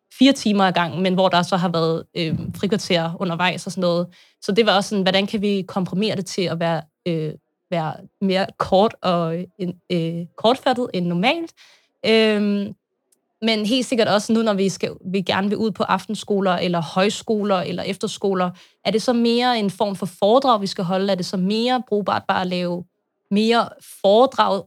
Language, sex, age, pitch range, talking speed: Danish, female, 20-39, 180-210 Hz, 190 wpm